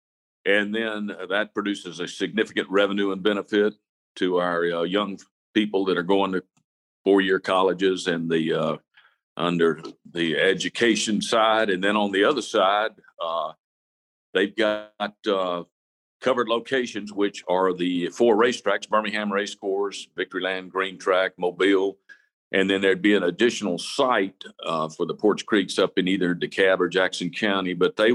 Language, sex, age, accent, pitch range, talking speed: English, male, 50-69, American, 85-100 Hz, 155 wpm